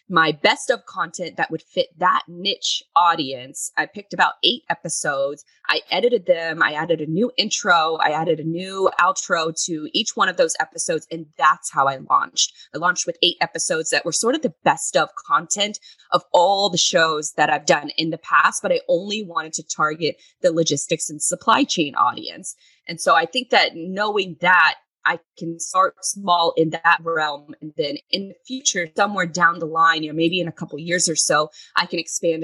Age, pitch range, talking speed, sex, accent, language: 20-39, 160-200 Hz, 205 wpm, female, American, English